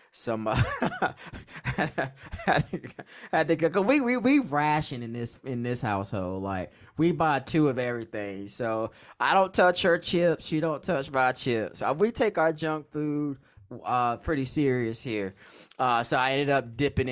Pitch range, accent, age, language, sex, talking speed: 105-135 Hz, American, 20-39, English, male, 165 wpm